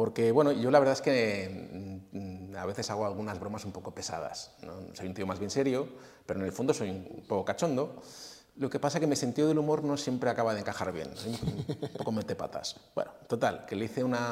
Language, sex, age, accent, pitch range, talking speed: Spanish, male, 30-49, Spanish, 95-125 Hz, 235 wpm